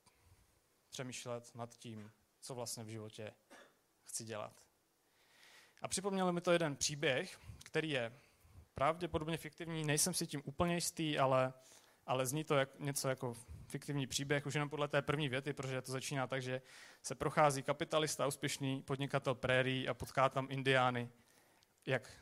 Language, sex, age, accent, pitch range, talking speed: Czech, male, 30-49, native, 120-150 Hz, 150 wpm